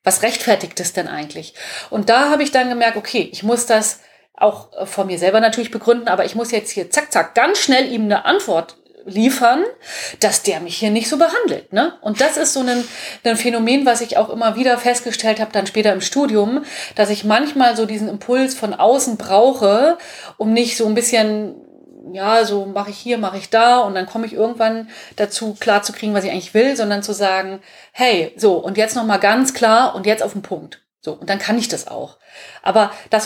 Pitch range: 200-245 Hz